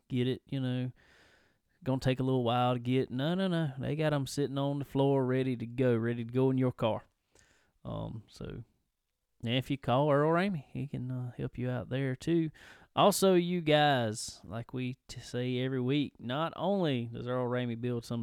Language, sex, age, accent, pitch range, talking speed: English, male, 30-49, American, 115-140 Hz, 200 wpm